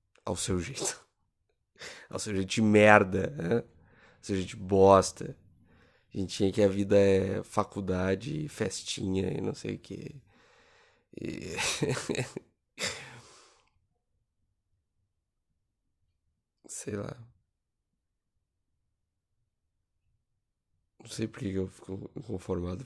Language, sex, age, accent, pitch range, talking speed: Portuguese, male, 20-39, Brazilian, 95-115 Hz, 95 wpm